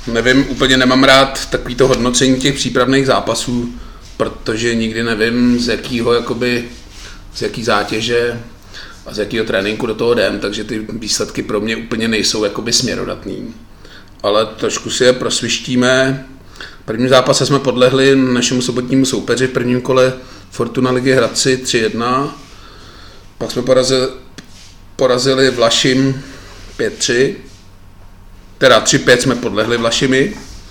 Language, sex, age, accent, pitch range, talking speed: Czech, male, 30-49, native, 110-130 Hz, 125 wpm